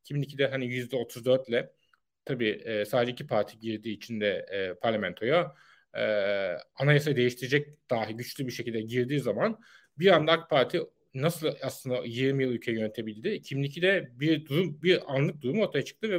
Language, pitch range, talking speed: Turkish, 125-165 Hz, 150 wpm